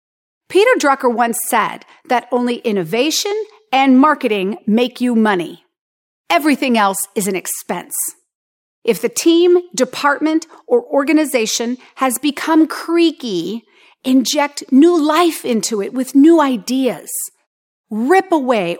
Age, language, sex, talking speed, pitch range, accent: 40-59, English, female, 115 wpm, 220-310 Hz, American